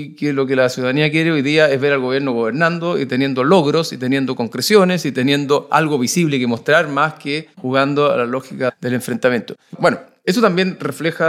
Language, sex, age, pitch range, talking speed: Spanish, male, 40-59, 130-170 Hz, 195 wpm